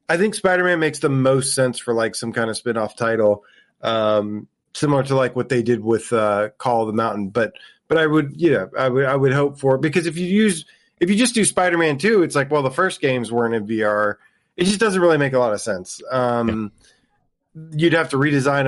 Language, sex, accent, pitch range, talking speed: English, male, American, 120-155 Hz, 235 wpm